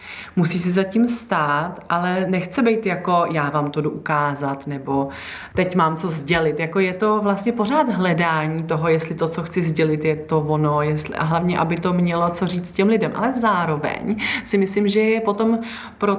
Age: 30-49